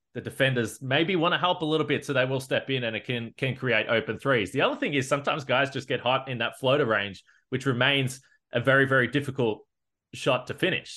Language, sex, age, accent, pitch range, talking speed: English, male, 20-39, Australian, 125-150 Hz, 235 wpm